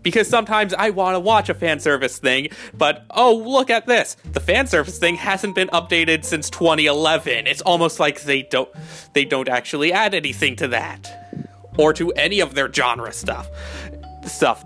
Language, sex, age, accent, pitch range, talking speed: English, male, 30-49, American, 160-220 Hz, 170 wpm